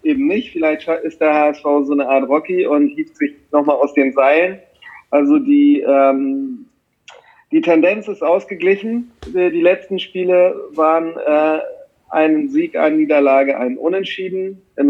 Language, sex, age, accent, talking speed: German, male, 40-59, German, 145 wpm